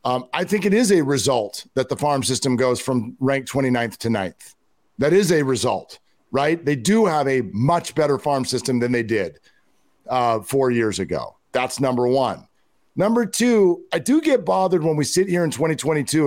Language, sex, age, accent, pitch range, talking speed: English, male, 50-69, American, 140-190 Hz, 190 wpm